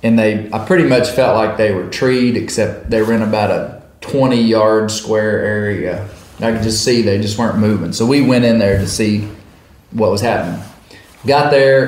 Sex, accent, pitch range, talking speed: male, American, 100-120 Hz, 205 wpm